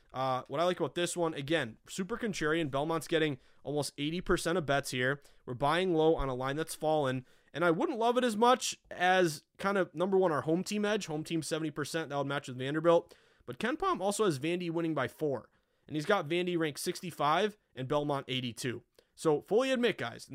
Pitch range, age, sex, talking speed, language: 140-180 Hz, 30-49, male, 210 wpm, English